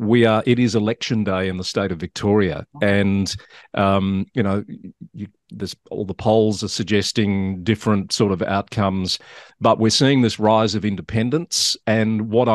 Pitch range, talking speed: 95-115 Hz, 165 wpm